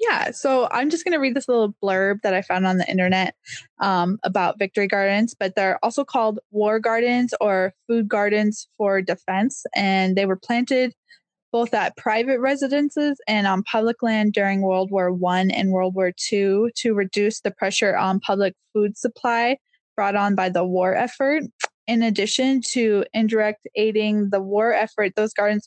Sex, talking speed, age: female, 175 wpm, 10-29